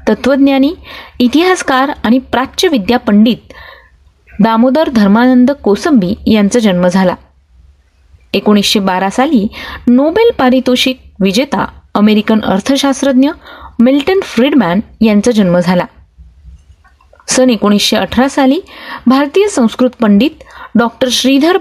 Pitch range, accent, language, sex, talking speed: 200-265 Hz, native, Marathi, female, 90 wpm